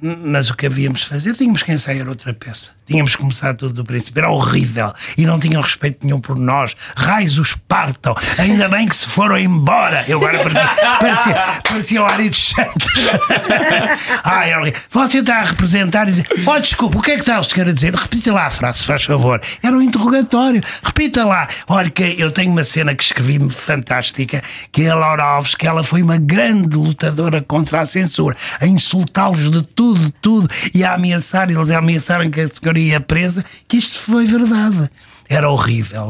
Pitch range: 130-180 Hz